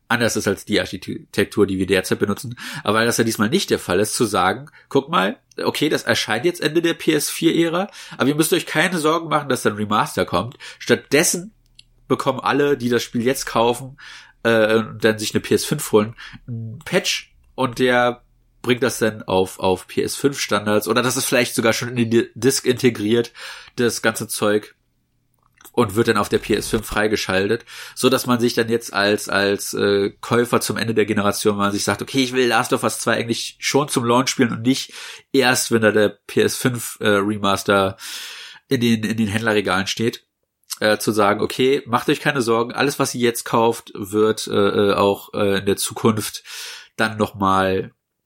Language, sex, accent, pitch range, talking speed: German, male, German, 105-130 Hz, 185 wpm